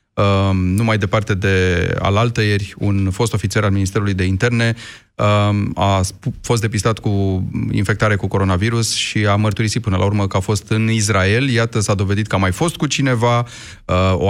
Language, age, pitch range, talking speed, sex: Romanian, 30-49, 100-120 Hz, 170 wpm, male